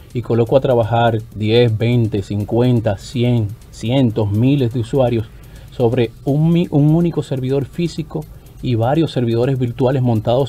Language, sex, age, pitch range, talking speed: Spanish, male, 30-49, 115-140 Hz, 130 wpm